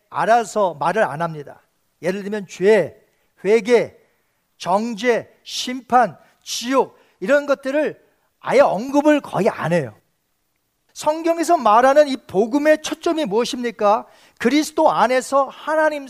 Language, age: Korean, 40-59